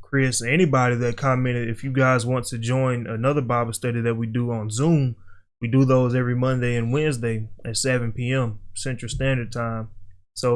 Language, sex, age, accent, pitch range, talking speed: English, male, 20-39, American, 110-130 Hz, 180 wpm